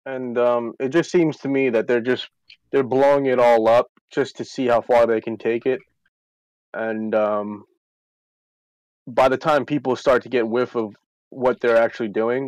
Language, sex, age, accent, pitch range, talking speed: English, male, 20-39, American, 110-125 Hz, 190 wpm